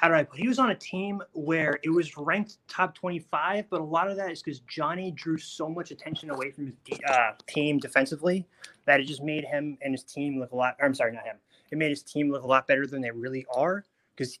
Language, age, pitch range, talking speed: English, 20-39, 135-160 Hz, 260 wpm